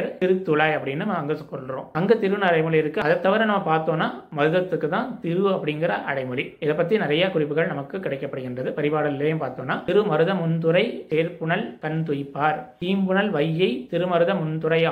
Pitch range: 145-180 Hz